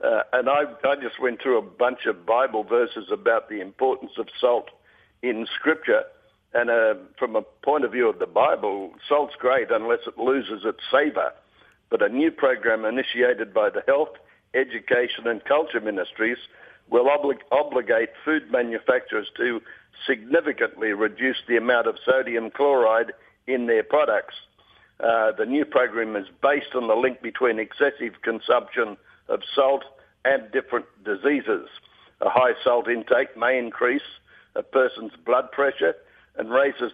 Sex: male